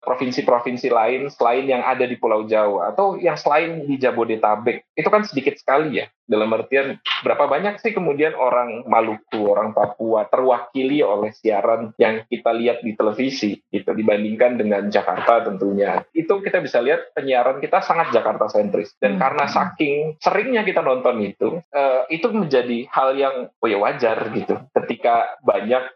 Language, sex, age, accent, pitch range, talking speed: Indonesian, male, 20-39, native, 105-150 Hz, 155 wpm